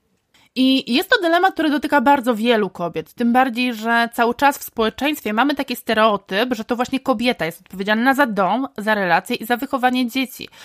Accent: native